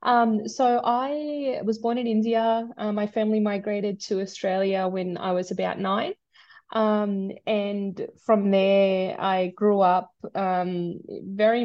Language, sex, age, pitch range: English, female, 20-39, 185-215 Hz